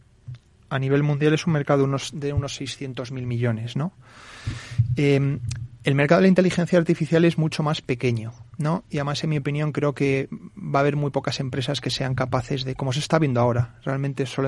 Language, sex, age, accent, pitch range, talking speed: Spanish, male, 30-49, Spanish, 125-155 Hz, 205 wpm